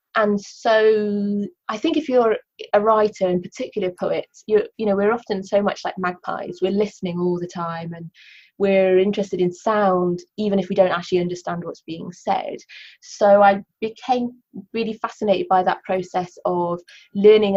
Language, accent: English, British